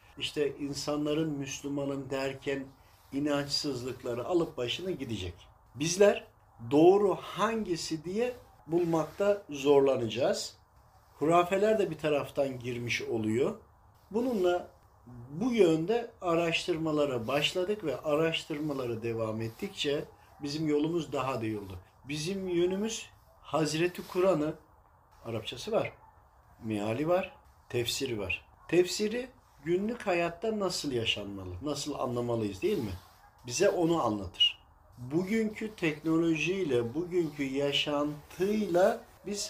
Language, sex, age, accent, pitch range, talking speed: Turkish, male, 50-69, native, 120-170 Hz, 95 wpm